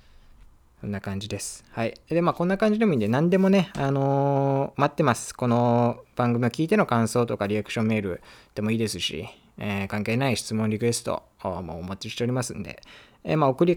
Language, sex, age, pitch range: Japanese, male, 20-39, 100-140 Hz